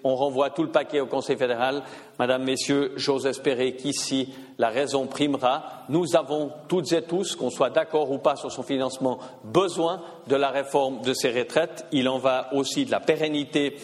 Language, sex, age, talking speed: French, male, 50-69, 185 wpm